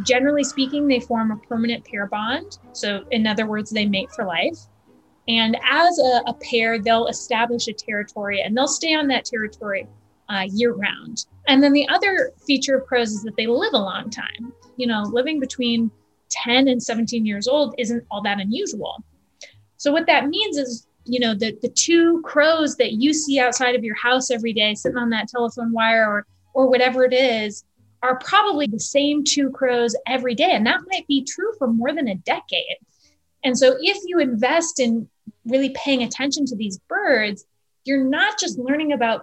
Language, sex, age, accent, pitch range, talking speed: English, female, 20-39, American, 220-275 Hz, 195 wpm